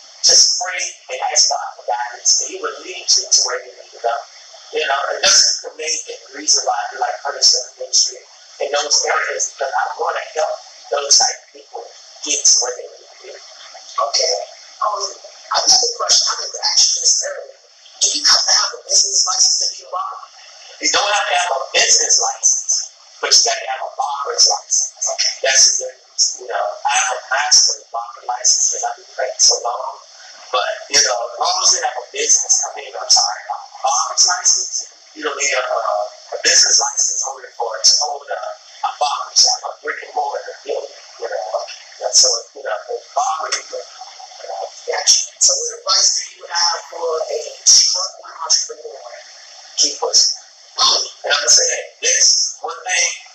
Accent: American